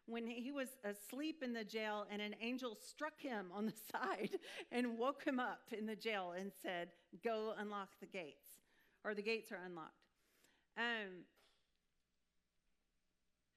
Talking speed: 150 wpm